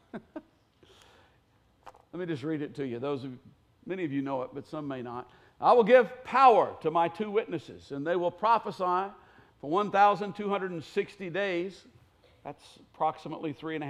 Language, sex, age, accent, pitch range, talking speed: English, male, 50-69, American, 170-215 Hz, 165 wpm